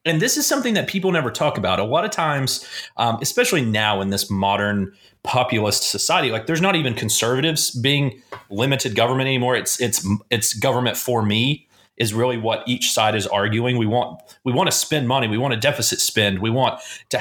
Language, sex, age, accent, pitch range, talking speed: English, male, 30-49, American, 110-145 Hz, 200 wpm